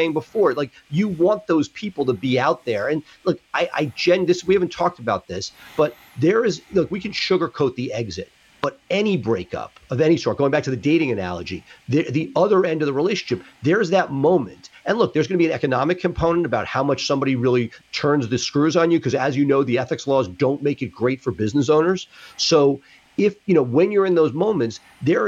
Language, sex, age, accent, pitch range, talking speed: English, male, 40-59, American, 125-160 Hz, 225 wpm